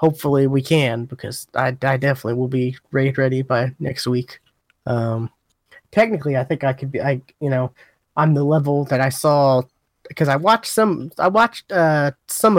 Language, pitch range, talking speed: English, 130-155 Hz, 180 wpm